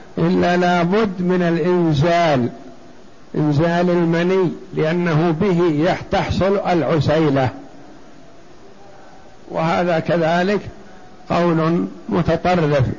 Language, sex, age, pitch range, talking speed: Arabic, male, 60-79, 160-190 Hz, 65 wpm